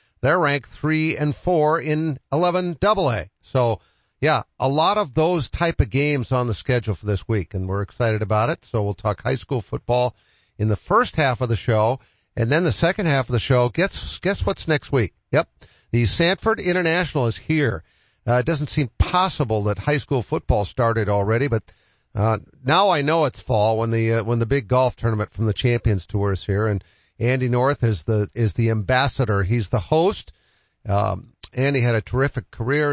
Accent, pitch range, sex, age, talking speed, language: American, 105-135 Hz, male, 50-69, 210 wpm, English